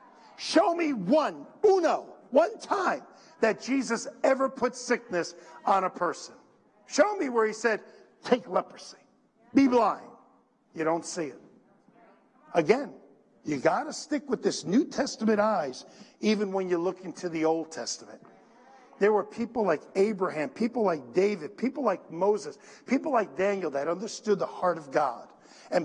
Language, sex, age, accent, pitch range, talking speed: English, male, 50-69, American, 175-245 Hz, 155 wpm